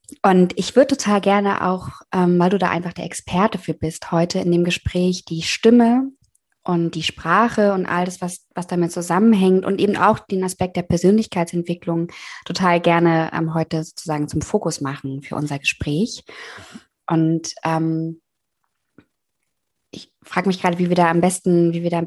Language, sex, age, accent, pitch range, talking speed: German, female, 20-39, German, 170-195 Hz, 170 wpm